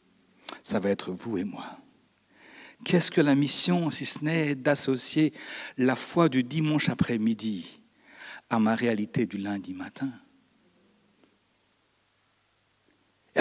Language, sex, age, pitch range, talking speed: French, male, 60-79, 155-240 Hz, 115 wpm